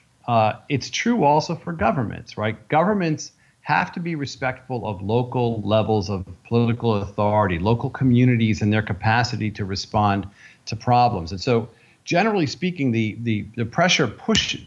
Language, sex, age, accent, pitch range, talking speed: English, male, 40-59, American, 110-140 Hz, 145 wpm